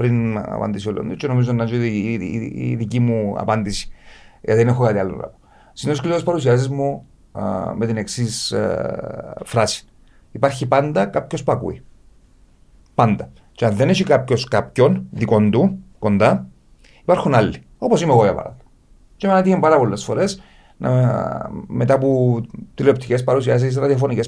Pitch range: 115-185 Hz